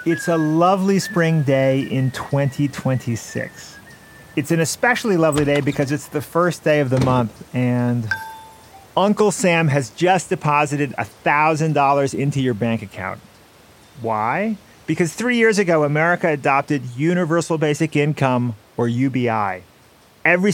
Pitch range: 125-165 Hz